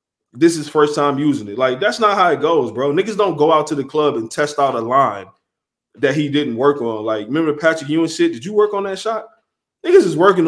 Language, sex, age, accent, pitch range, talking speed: English, male, 20-39, American, 120-170 Hz, 250 wpm